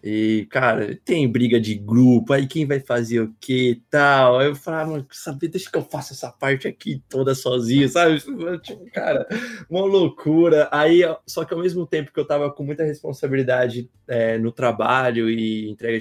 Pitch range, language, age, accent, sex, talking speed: 125-160 Hz, Portuguese, 20-39, Brazilian, male, 175 wpm